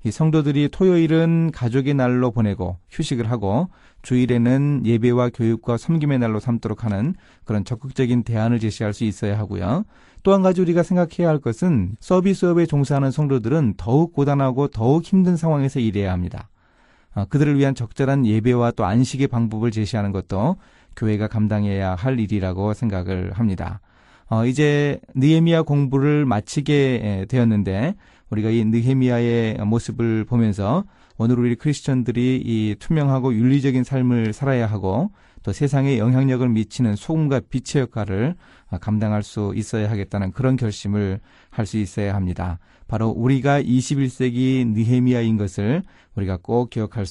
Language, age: Korean, 30-49